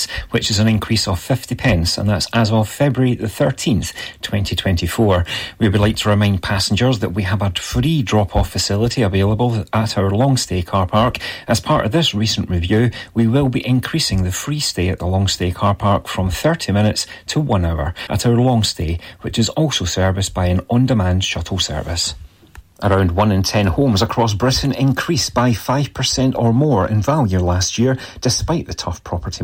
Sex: male